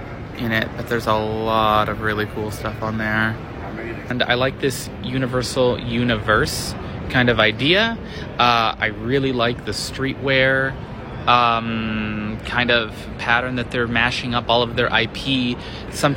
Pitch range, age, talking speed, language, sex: 115-135 Hz, 20-39, 150 wpm, English, male